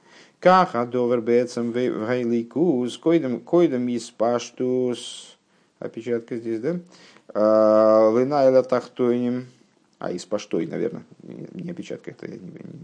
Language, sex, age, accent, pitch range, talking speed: Russian, male, 50-69, native, 115-160 Hz, 90 wpm